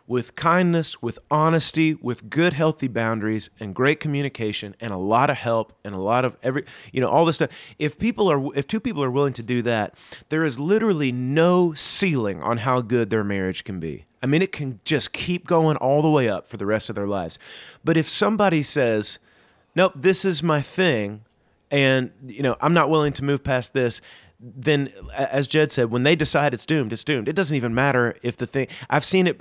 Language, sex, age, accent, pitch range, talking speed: English, male, 30-49, American, 115-155 Hz, 215 wpm